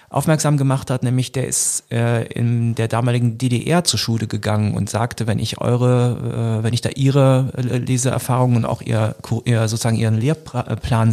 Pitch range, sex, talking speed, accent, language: 110-125 Hz, male, 155 wpm, German, German